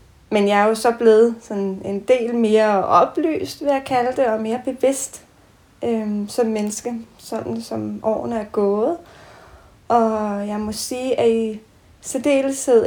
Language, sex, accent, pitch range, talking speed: Danish, female, native, 200-240 Hz, 155 wpm